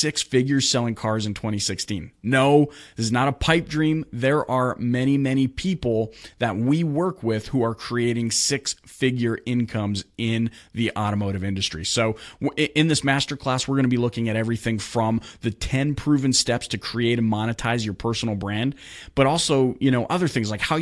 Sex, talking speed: male, 180 wpm